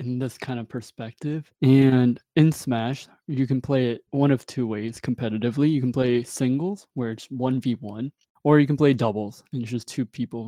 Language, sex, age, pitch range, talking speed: English, male, 20-39, 115-140 Hz, 195 wpm